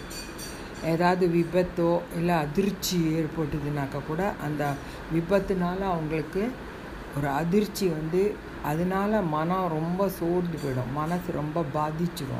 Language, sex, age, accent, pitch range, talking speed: Tamil, female, 50-69, native, 150-180 Hz, 95 wpm